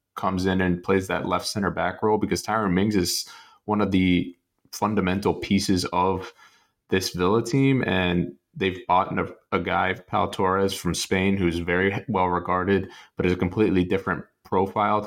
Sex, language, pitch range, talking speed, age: male, English, 90-105 Hz, 165 wpm, 20-39